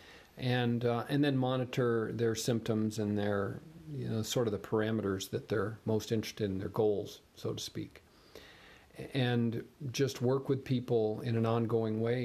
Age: 50-69